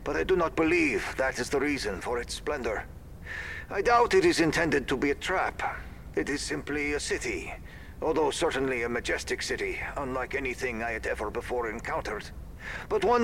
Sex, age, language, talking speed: male, 50-69, English, 180 wpm